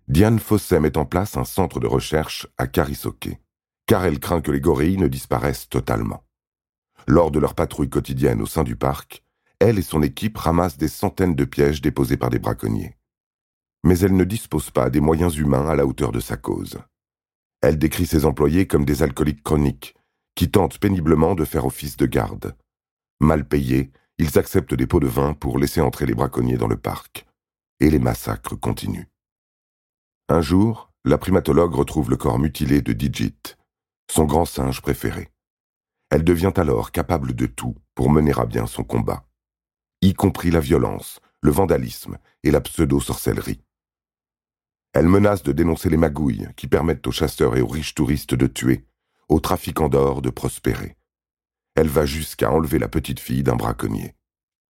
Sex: male